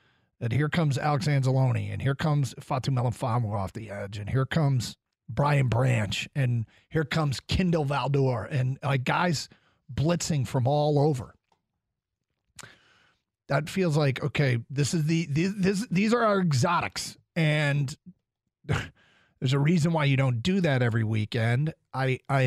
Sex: male